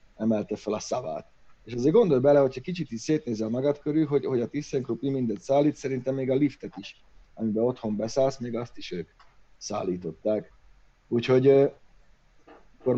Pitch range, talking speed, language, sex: 105-135 Hz, 160 wpm, Hungarian, male